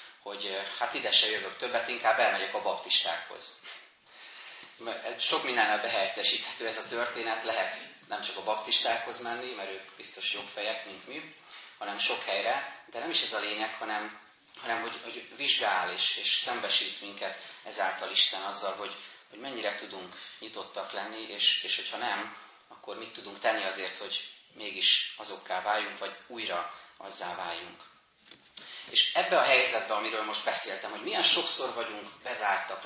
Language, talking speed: Hungarian, 155 wpm